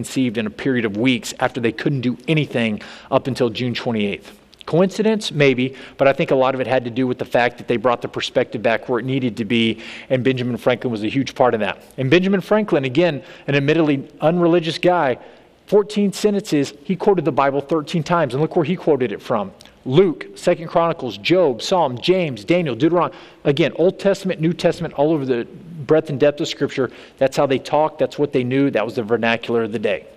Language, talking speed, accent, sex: English, 215 wpm, American, male